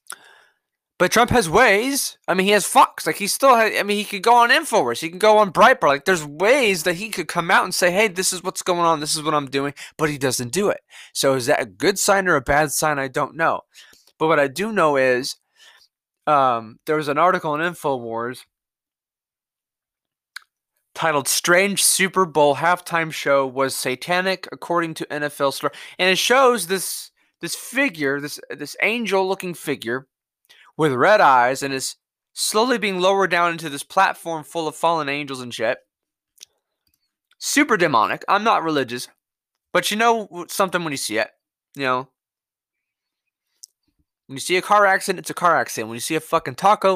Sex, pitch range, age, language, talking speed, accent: male, 140-190 Hz, 20-39, English, 185 wpm, American